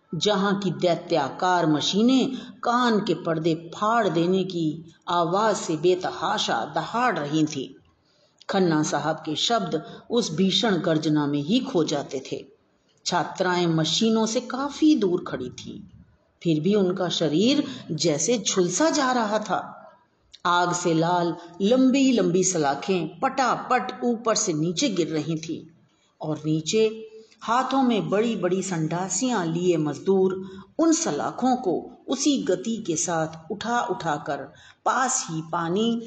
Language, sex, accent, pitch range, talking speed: Hindi, female, native, 160-220 Hz, 125 wpm